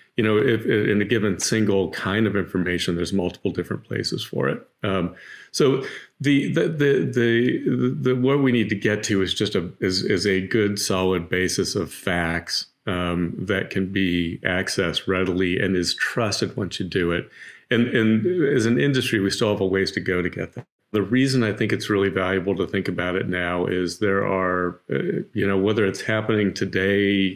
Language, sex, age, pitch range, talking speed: English, male, 40-59, 95-110 Hz, 195 wpm